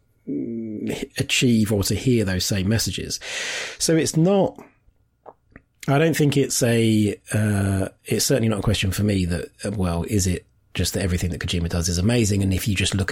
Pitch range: 95-115 Hz